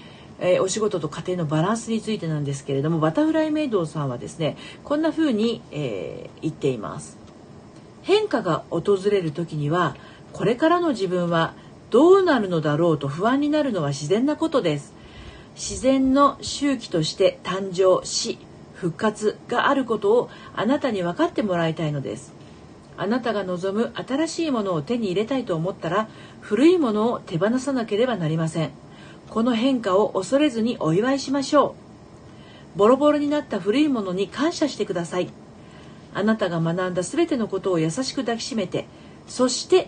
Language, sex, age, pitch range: Japanese, female, 50-69, 170-275 Hz